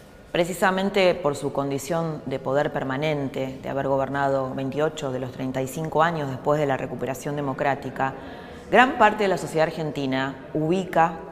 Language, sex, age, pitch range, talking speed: Spanish, female, 20-39, 135-155 Hz, 145 wpm